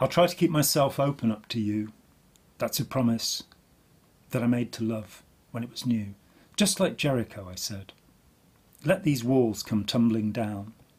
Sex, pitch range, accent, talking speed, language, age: male, 105-120 Hz, British, 175 wpm, English, 40-59